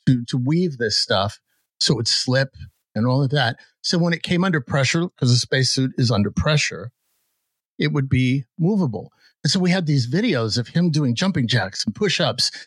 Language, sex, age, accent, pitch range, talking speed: English, male, 50-69, American, 110-140 Hz, 195 wpm